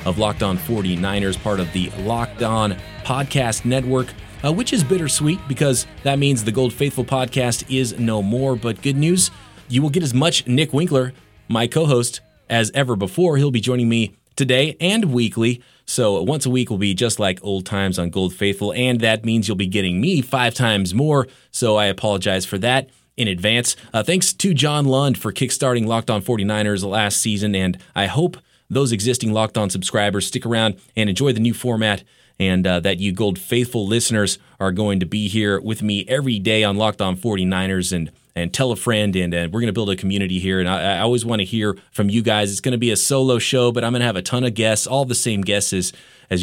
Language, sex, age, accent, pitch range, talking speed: English, male, 30-49, American, 100-125 Hz, 220 wpm